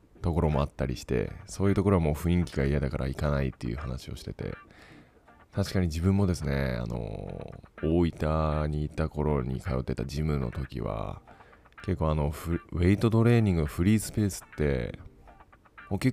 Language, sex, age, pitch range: Japanese, male, 20-39, 75-95 Hz